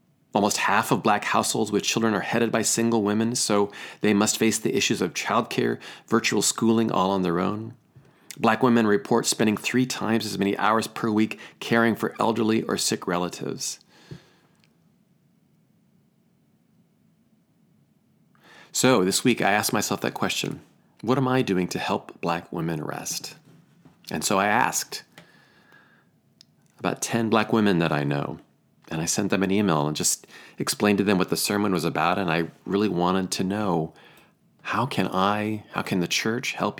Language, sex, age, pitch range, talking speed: English, male, 40-59, 90-115 Hz, 165 wpm